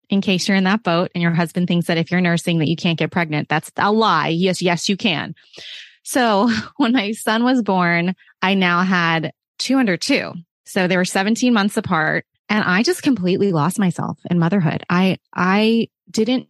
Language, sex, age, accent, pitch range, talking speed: English, female, 20-39, American, 170-215 Hz, 200 wpm